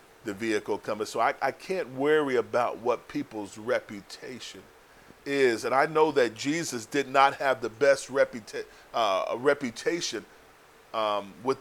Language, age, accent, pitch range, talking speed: English, 40-59, American, 130-170 Hz, 150 wpm